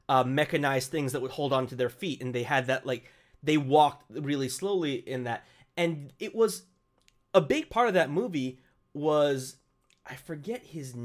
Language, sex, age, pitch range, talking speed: English, male, 30-49, 130-160 Hz, 185 wpm